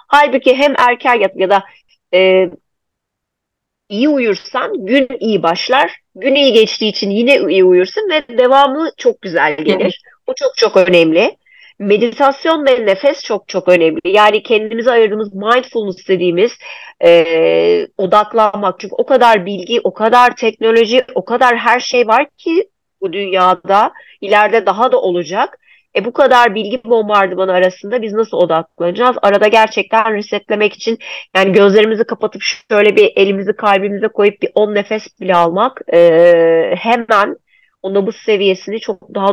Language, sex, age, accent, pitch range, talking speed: Turkish, female, 40-59, native, 195-255 Hz, 140 wpm